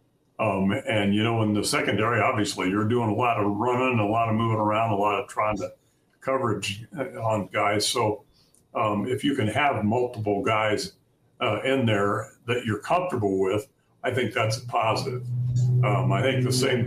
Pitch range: 105-130 Hz